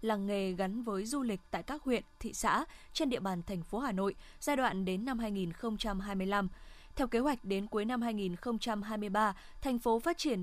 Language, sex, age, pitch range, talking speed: Vietnamese, female, 20-39, 200-250 Hz, 195 wpm